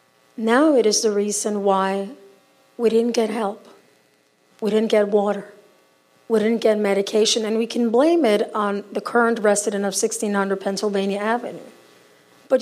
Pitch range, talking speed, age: 200-250 Hz, 150 wpm, 50-69